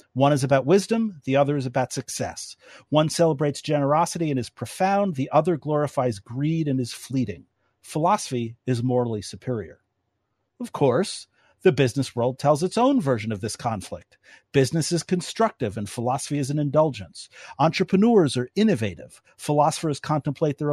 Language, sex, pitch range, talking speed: English, male, 120-175 Hz, 150 wpm